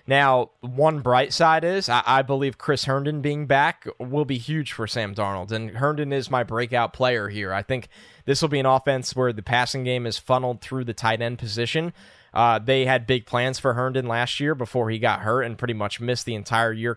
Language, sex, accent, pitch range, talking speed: English, male, American, 115-135 Hz, 225 wpm